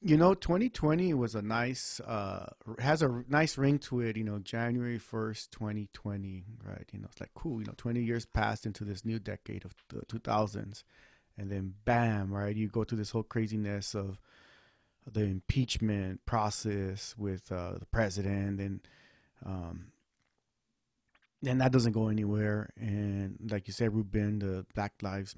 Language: English